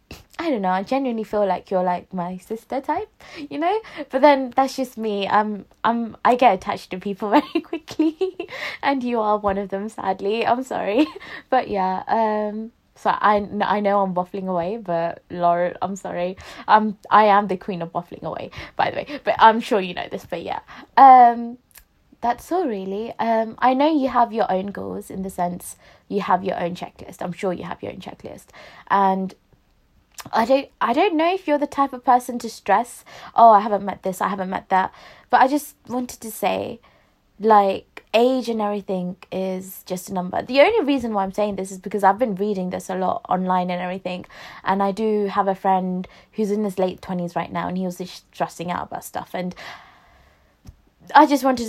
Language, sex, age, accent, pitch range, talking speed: English, female, 20-39, British, 185-245 Hz, 205 wpm